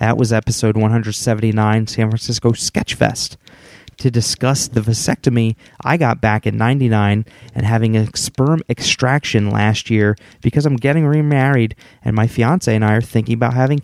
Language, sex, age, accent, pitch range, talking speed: English, male, 30-49, American, 110-130 Hz, 155 wpm